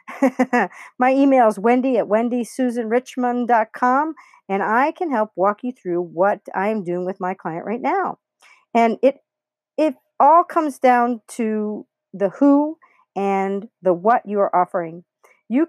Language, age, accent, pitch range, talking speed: English, 50-69, American, 195-250 Hz, 140 wpm